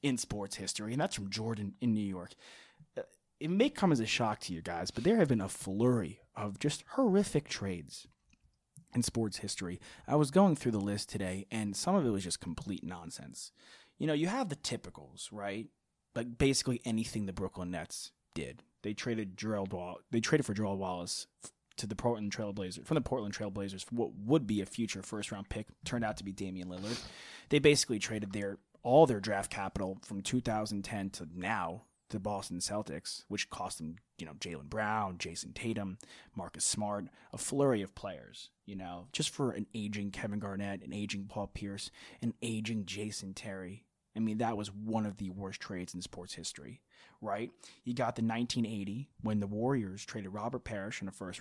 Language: English